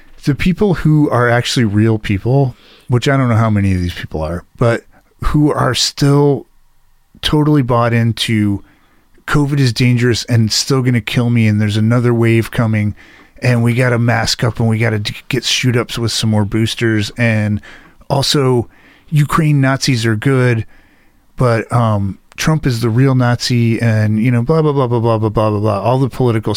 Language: English